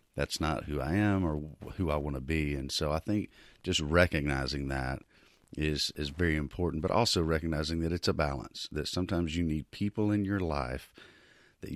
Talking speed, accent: 195 wpm, American